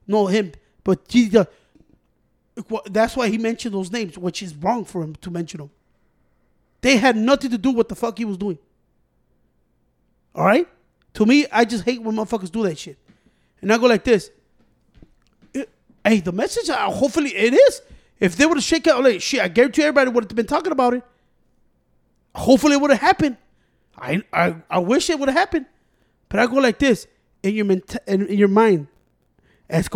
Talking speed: 200 wpm